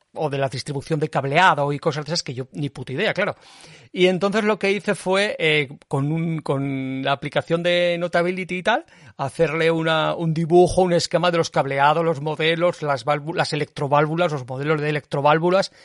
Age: 40-59